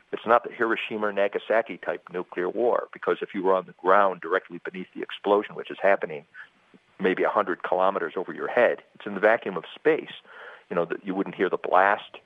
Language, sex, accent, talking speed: English, male, American, 200 wpm